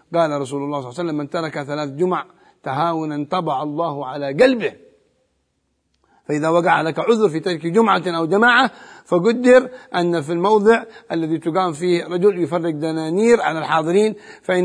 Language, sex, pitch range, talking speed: Arabic, male, 150-190 Hz, 155 wpm